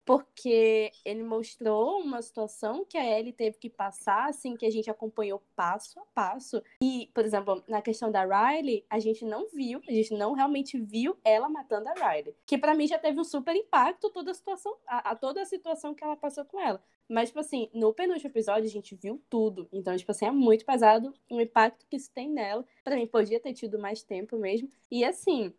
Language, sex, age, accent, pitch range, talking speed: Portuguese, female, 10-29, Brazilian, 220-280 Hz, 210 wpm